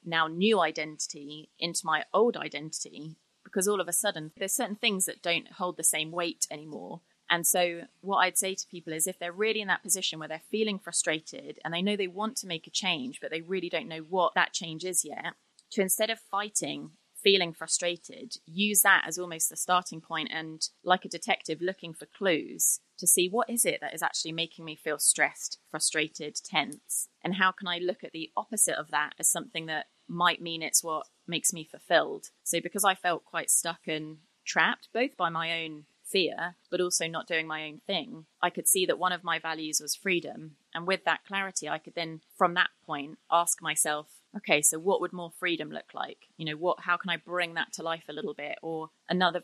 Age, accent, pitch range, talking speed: 30-49, British, 160-185 Hz, 215 wpm